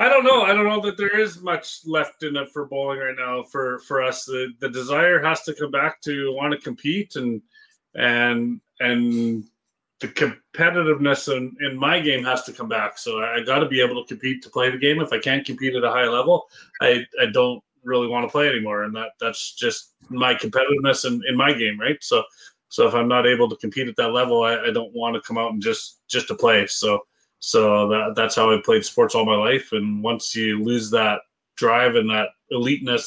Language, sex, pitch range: English, male, 120-155 Hz